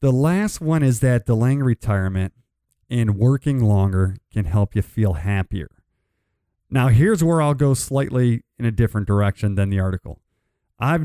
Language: English